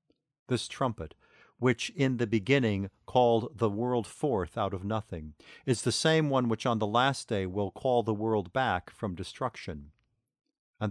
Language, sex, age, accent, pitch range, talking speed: English, male, 50-69, American, 105-130 Hz, 165 wpm